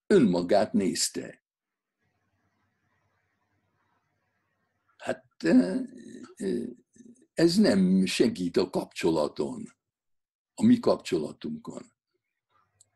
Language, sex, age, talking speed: Hungarian, male, 60-79, 50 wpm